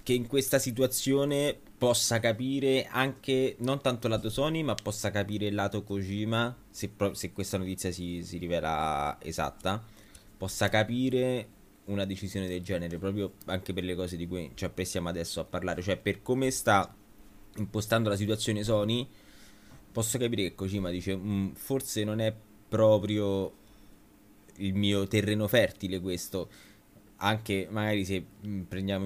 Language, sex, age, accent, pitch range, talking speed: Italian, male, 20-39, native, 90-110 Hz, 150 wpm